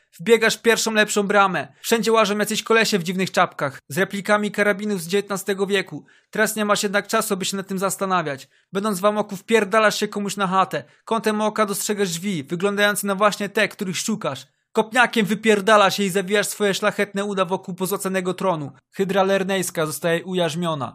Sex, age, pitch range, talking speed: male, 20-39, 190-210 Hz, 170 wpm